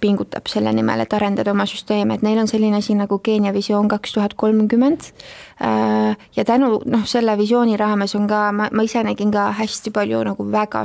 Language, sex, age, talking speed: English, female, 20-39, 170 wpm